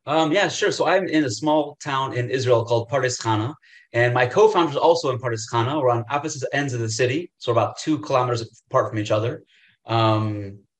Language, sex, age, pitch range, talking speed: English, male, 30-49, 115-150 Hz, 205 wpm